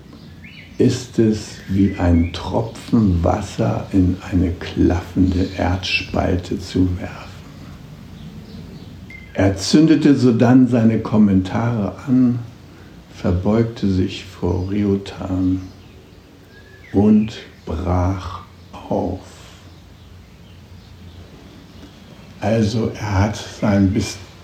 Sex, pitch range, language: male, 90-105 Hz, German